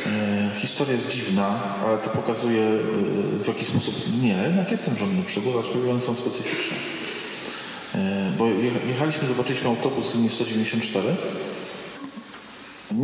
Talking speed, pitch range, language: 130 wpm, 110-140 Hz, Polish